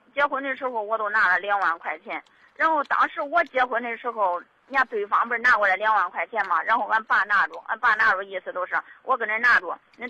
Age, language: 20-39, Chinese